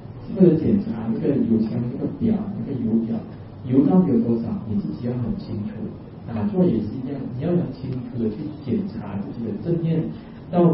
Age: 40-59